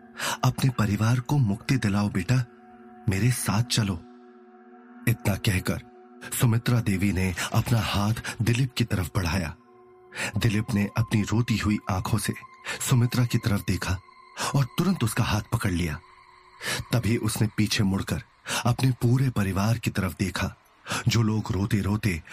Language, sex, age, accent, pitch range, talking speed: Hindi, male, 30-49, native, 100-120 Hz, 135 wpm